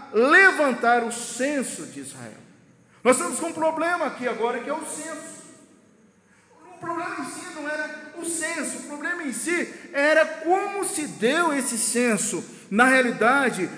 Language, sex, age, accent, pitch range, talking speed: Portuguese, male, 50-69, Brazilian, 215-290 Hz, 155 wpm